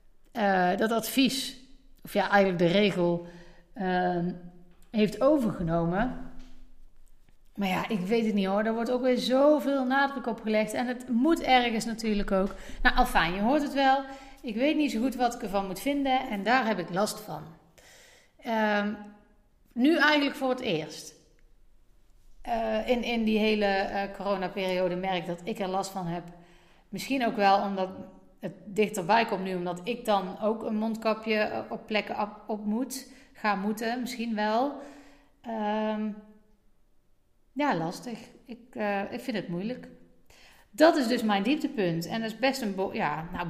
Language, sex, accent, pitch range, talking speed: Dutch, female, Dutch, 185-245 Hz, 165 wpm